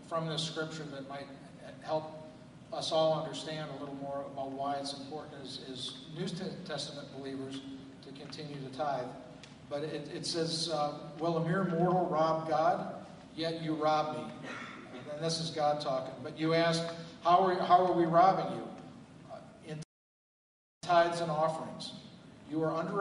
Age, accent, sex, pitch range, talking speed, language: 50-69, American, male, 140-170 Hz, 165 wpm, English